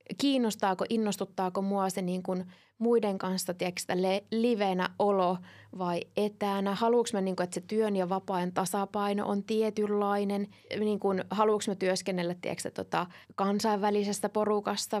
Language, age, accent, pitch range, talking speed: Finnish, 20-39, native, 190-245 Hz, 135 wpm